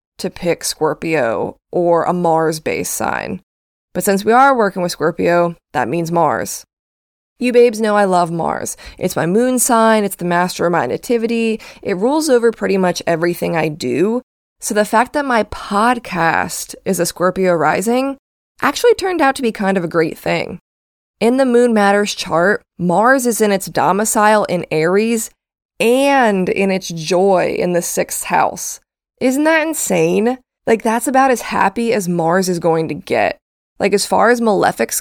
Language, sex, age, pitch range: English, female, 20-39, 175-235 Hz